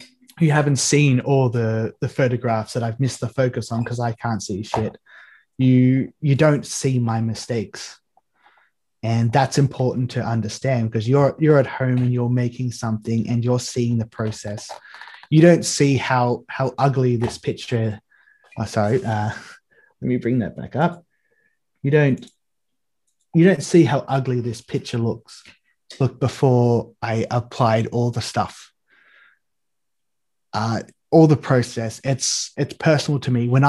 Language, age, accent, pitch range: English, 20-39, Australian, 115-140 Hz